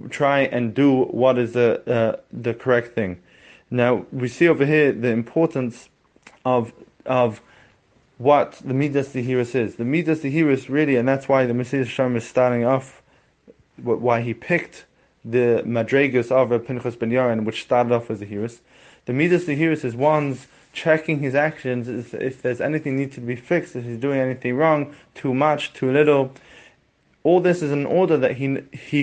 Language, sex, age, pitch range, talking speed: English, male, 20-39, 120-145 Hz, 180 wpm